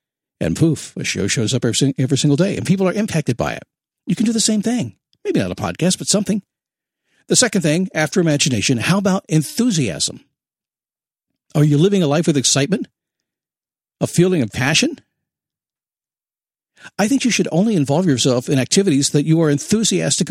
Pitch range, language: 135-190 Hz, English